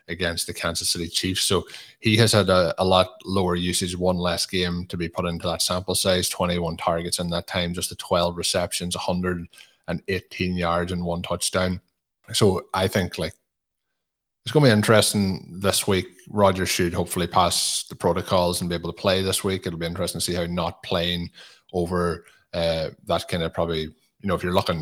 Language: English